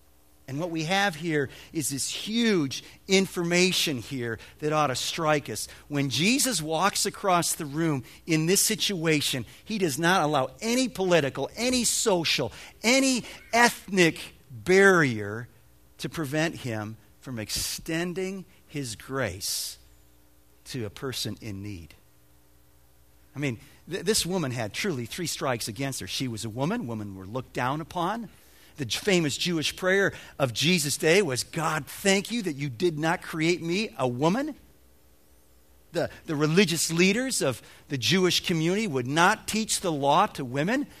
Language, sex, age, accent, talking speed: English, male, 50-69, American, 145 wpm